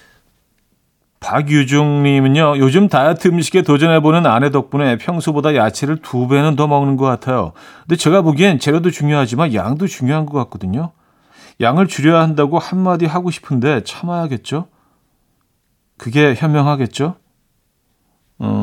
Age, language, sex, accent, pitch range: 40-59, Korean, male, native, 115-160 Hz